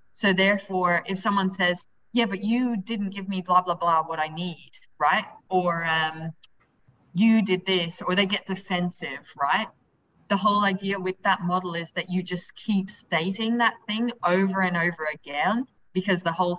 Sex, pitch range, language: female, 165-195 Hz, English